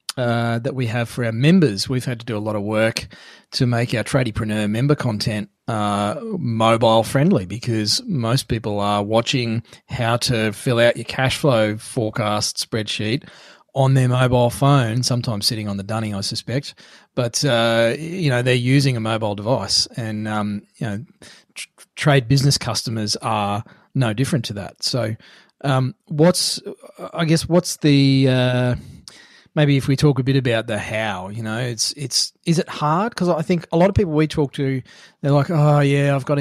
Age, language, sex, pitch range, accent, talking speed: 30-49, English, male, 110-135 Hz, Australian, 180 wpm